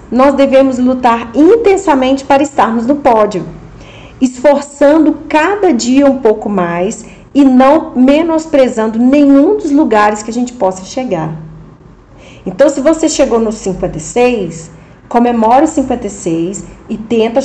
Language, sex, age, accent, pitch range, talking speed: English, female, 40-59, Brazilian, 200-275 Hz, 125 wpm